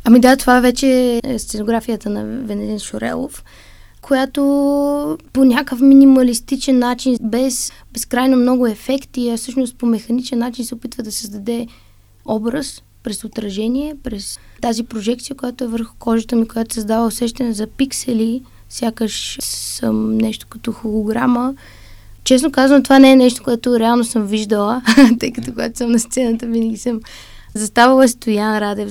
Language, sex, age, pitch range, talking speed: Bulgarian, female, 20-39, 225-255 Hz, 145 wpm